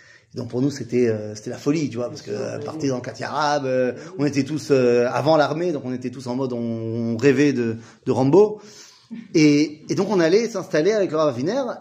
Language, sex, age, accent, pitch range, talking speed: French, male, 30-49, French, 125-165 Hz, 230 wpm